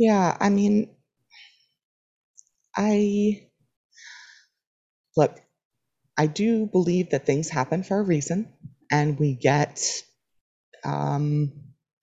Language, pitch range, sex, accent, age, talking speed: English, 145-185 Hz, female, American, 30-49, 90 wpm